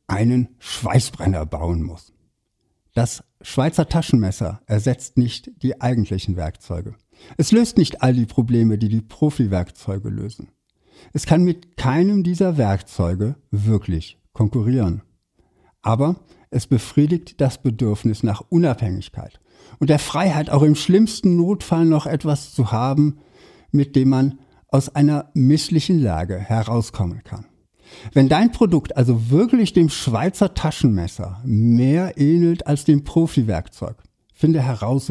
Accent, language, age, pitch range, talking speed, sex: German, German, 60-79, 110-155 Hz, 125 wpm, male